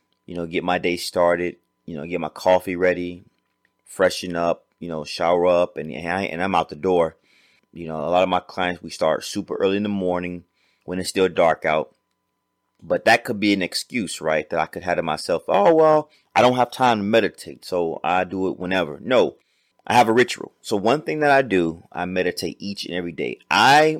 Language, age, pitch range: English, 30-49, 85-100 Hz